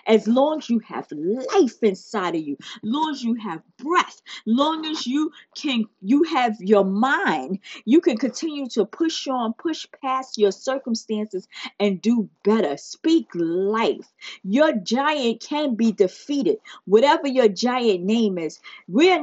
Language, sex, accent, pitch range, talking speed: English, female, American, 210-295 Hz, 155 wpm